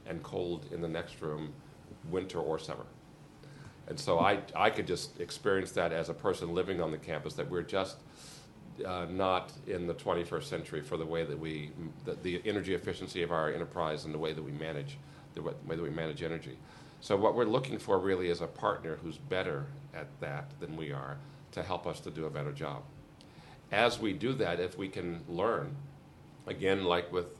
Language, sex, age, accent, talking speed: English, male, 50-69, American, 200 wpm